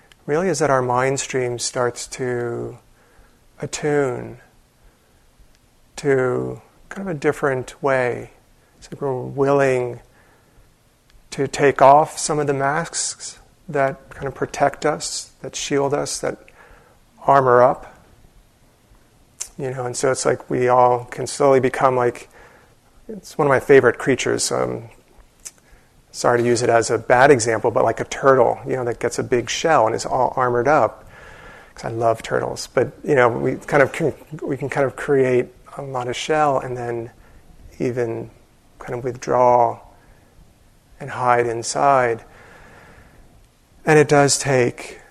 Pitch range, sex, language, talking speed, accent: 120-140 Hz, male, English, 150 wpm, American